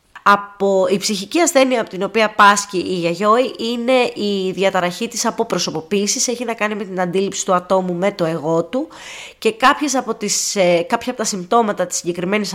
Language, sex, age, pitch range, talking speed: Greek, female, 20-39, 185-255 Hz, 175 wpm